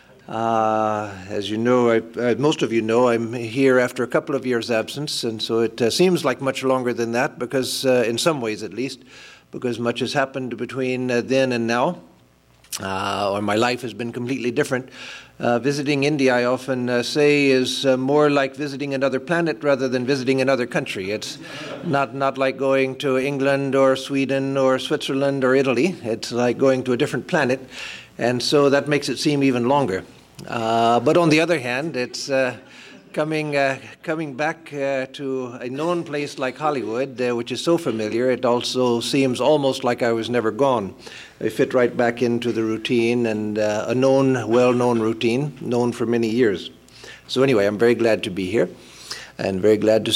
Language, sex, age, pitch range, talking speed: English, male, 50-69, 120-135 Hz, 195 wpm